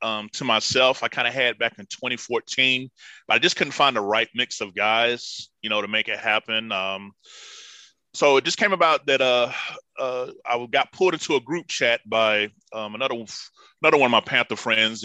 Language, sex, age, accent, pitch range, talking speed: English, male, 20-39, American, 110-140 Hz, 205 wpm